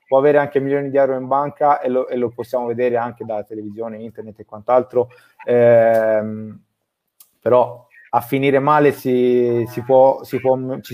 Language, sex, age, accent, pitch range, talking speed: Italian, male, 20-39, native, 115-140 Hz, 130 wpm